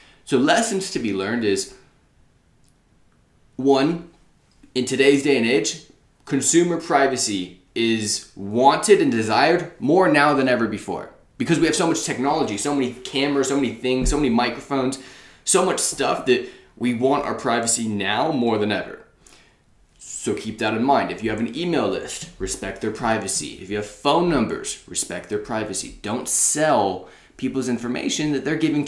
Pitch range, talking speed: 110-150 Hz, 165 wpm